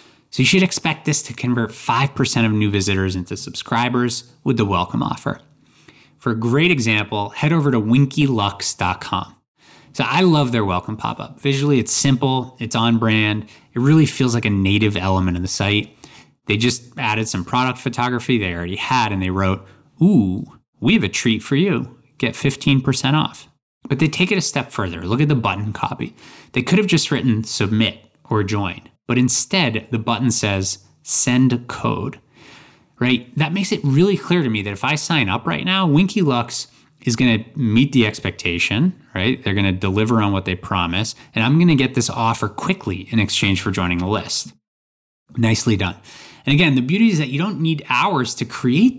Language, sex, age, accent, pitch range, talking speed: English, male, 20-39, American, 105-140 Hz, 185 wpm